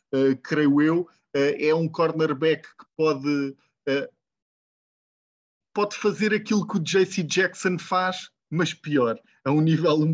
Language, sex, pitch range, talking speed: English, male, 140-170 Hz, 125 wpm